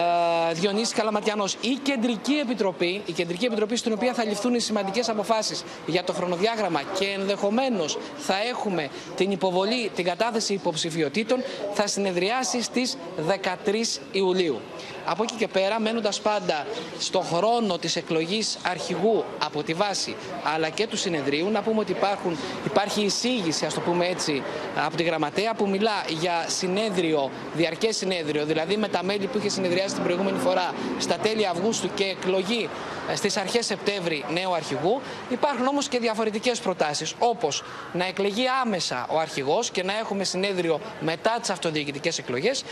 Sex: male